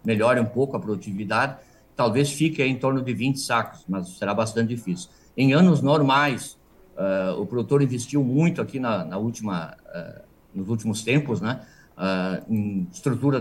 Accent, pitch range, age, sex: Brazilian, 115-140 Hz, 50-69, male